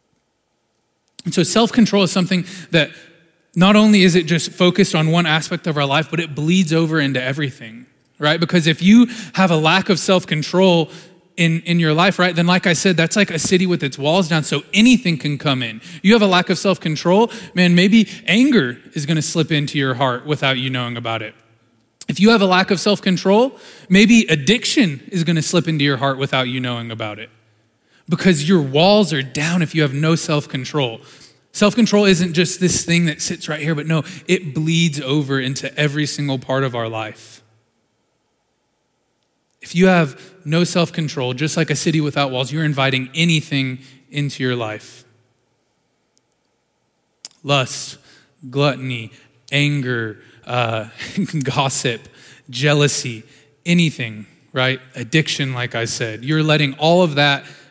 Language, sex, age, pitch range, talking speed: English, male, 20-39, 135-180 Hz, 170 wpm